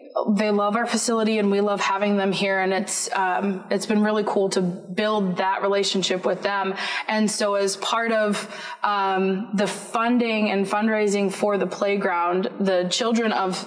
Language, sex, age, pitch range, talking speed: English, female, 20-39, 195-225 Hz, 170 wpm